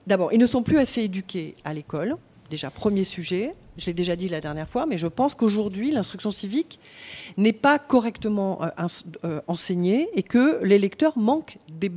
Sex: female